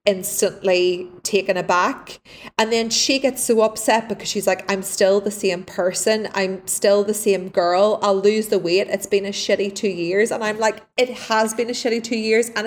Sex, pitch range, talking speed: female, 190-225 Hz, 205 wpm